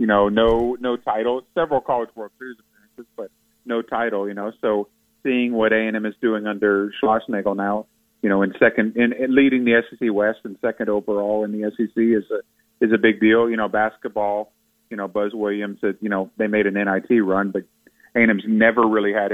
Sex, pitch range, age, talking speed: male, 100-115 Hz, 30-49, 215 wpm